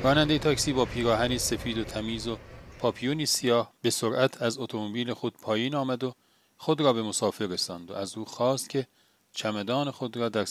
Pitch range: 105-130 Hz